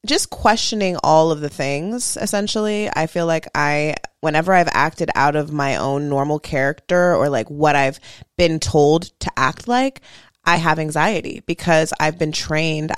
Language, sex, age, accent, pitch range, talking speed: English, female, 20-39, American, 150-180 Hz, 165 wpm